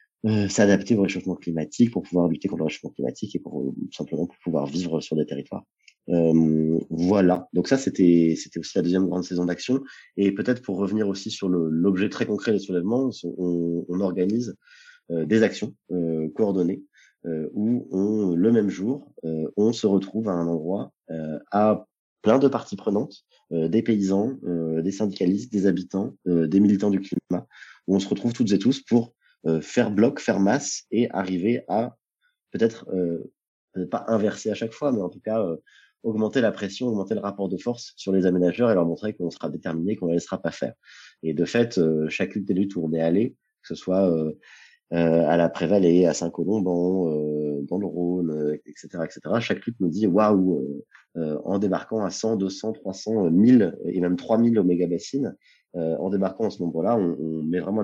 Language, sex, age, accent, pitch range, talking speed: French, male, 30-49, French, 85-105 Hz, 200 wpm